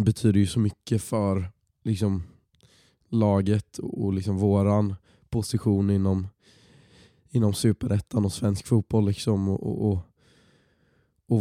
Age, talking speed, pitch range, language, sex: 20-39, 90 wpm, 100-115 Hz, Swedish, male